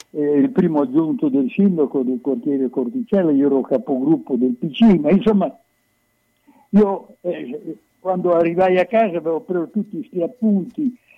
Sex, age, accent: male, 60-79, native